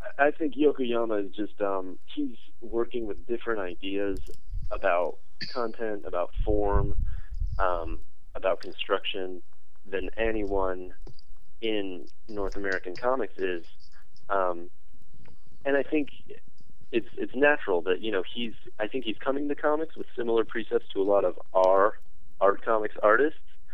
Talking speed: 135 wpm